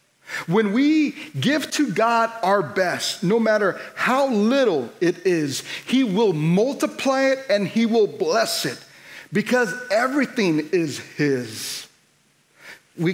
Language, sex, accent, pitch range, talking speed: English, male, American, 150-215 Hz, 125 wpm